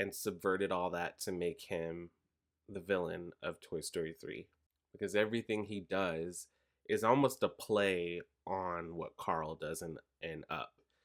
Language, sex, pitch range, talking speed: English, male, 85-100 Hz, 150 wpm